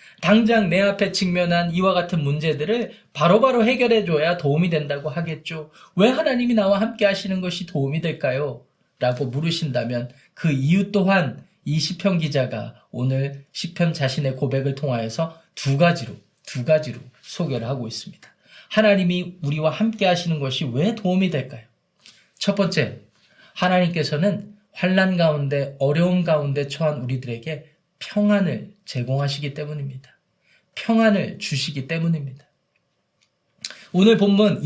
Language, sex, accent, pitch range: Korean, male, native, 140-200 Hz